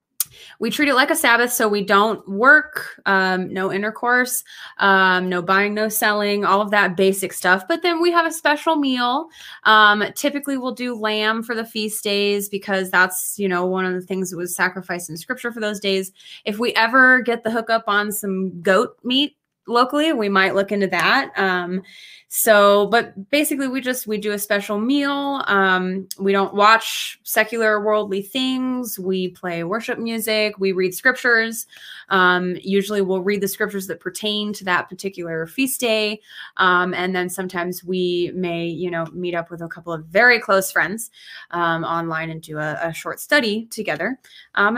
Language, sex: English, female